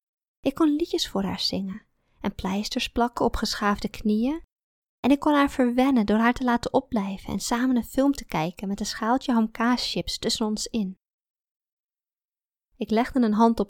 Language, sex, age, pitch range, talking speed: Dutch, female, 20-39, 195-240 Hz, 175 wpm